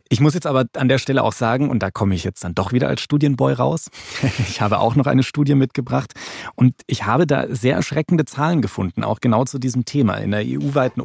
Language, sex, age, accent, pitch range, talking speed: German, male, 30-49, German, 115-140 Hz, 235 wpm